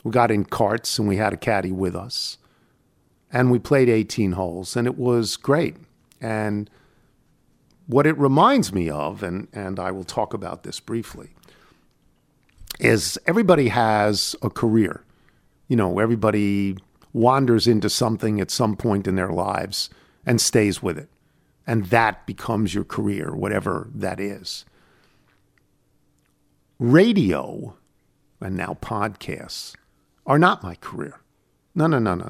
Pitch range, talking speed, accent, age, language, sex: 95-125 Hz, 140 wpm, American, 50-69, English, male